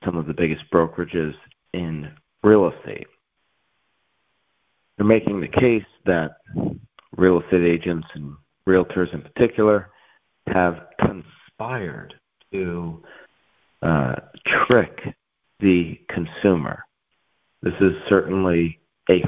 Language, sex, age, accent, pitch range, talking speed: English, male, 40-59, American, 85-105 Hz, 95 wpm